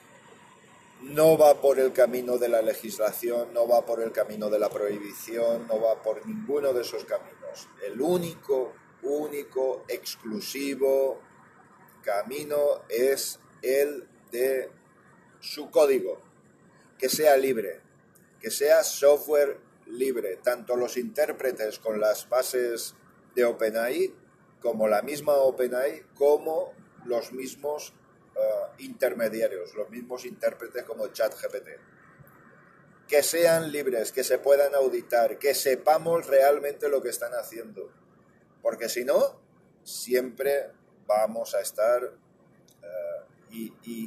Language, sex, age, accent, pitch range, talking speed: Spanish, male, 40-59, Spanish, 120-180 Hz, 115 wpm